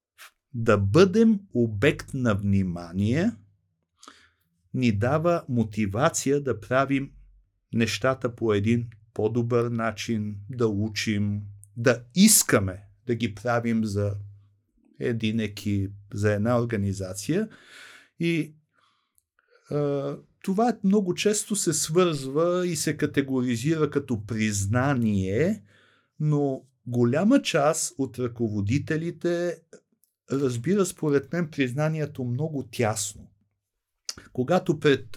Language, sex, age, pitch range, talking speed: Bulgarian, male, 50-69, 115-155 Hz, 90 wpm